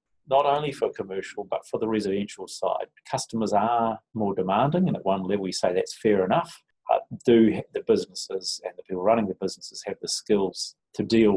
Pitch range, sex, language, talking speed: 95-120 Hz, male, English, 195 wpm